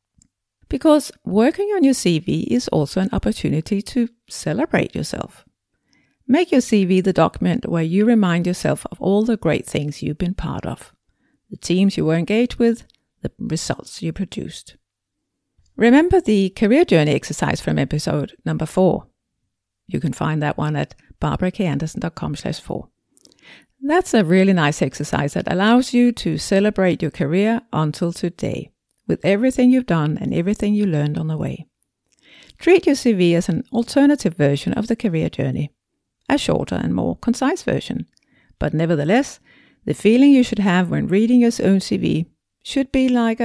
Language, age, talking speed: English, 50-69, 155 wpm